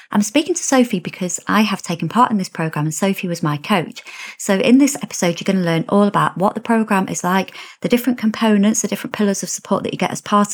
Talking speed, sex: 255 wpm, female